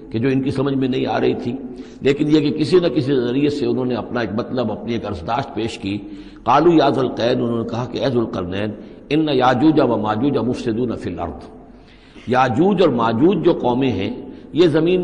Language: Urdu